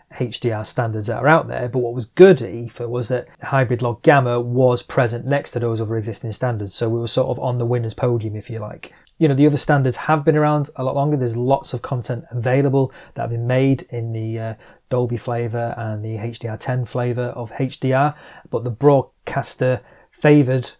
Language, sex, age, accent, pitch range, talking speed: English, male, 30-49, British, 115-130 Hz, 210 wpm